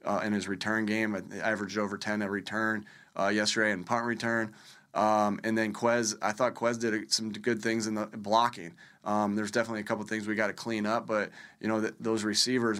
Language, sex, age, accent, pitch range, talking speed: English, male, 20-39, American, 105-115 Hz, 215 wpm